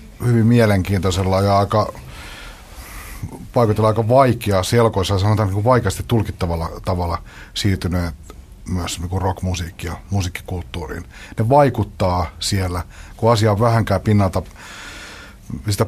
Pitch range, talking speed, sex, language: 90-110 Hz, 105 wpm, male, Finnish